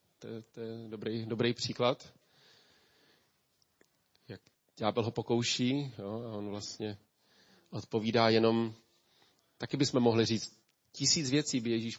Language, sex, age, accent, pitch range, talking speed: Czech, male, 40-59, native, 115-145 Hz, 125 wpm